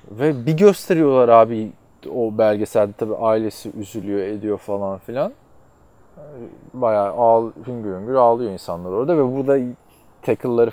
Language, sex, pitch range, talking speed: Turkish, male, 105-135 Hz, 115 wpm